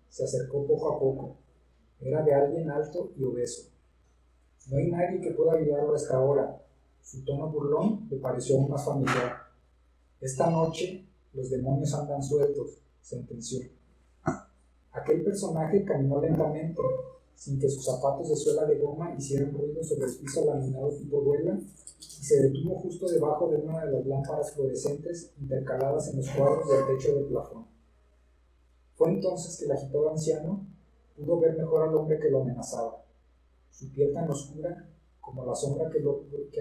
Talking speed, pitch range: 160 wpm, 130-165 Hz